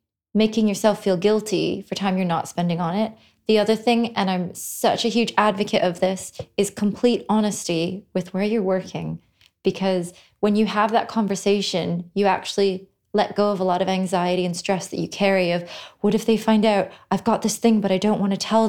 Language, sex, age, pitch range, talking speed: English, female, 20-39, 180-210 Hz, 210 wpm